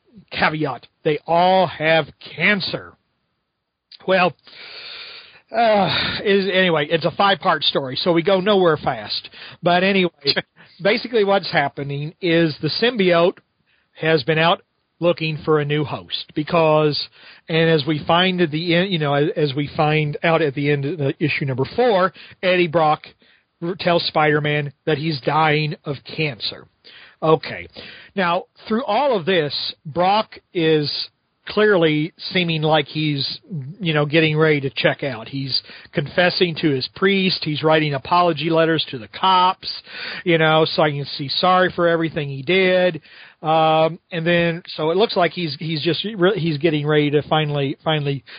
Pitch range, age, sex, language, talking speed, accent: 150-180 Hz, 40-59, male, English, 155 wpm, American